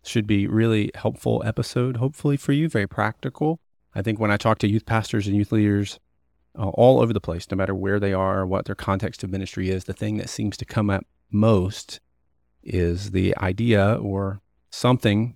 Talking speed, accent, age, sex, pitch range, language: 195 wpm, American, 30-49, male, 95-115 Hz, English